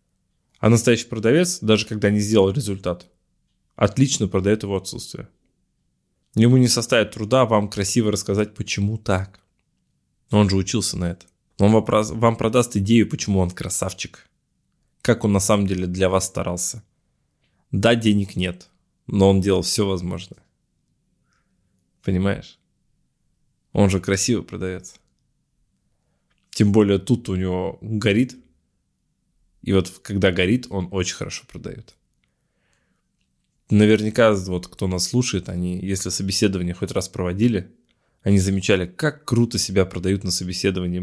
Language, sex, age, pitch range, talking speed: Russian, male, 20-39, 95-110 Hz, 130 wpm